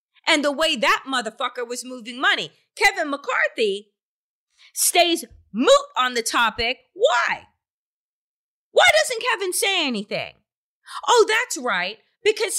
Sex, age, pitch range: female, 30-49, 235-370 Hz